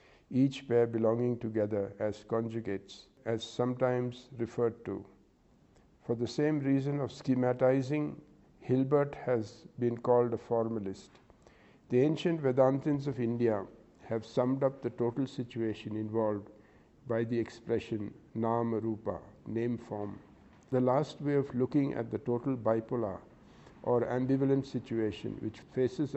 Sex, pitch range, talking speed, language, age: male, 115-135 Hz, 125 wpm, English, 60-79